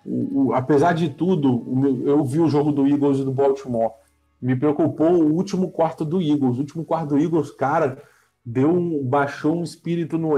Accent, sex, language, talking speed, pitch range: Brazilian, male, Portuguese, 190 wpm, 145-180 Hz